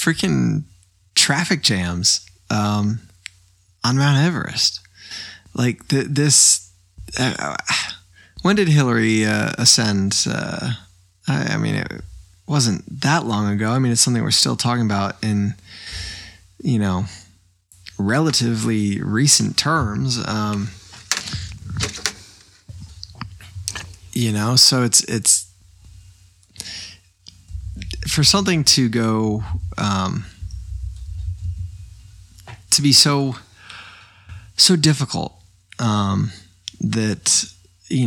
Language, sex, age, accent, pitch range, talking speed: English, male, 20-39, American, 90-120 Hz, 90 wpm